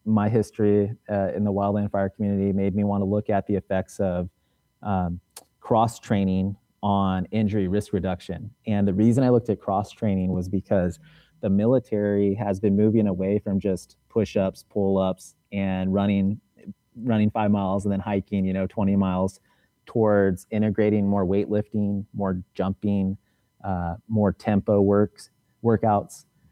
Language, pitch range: English, 100-110 Hz